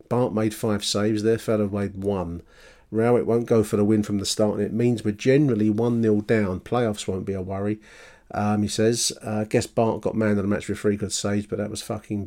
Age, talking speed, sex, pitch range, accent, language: 40-59, 240 wpm, male, 105-120 Hz, British, English